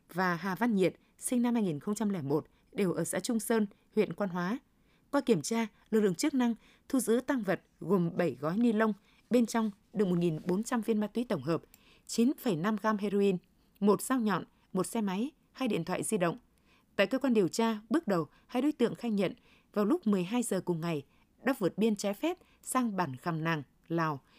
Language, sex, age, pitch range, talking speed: Vietnamese, female, 20-39, 185-235 Hz, 200 wpm